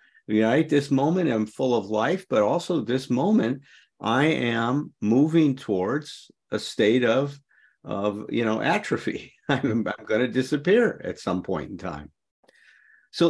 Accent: American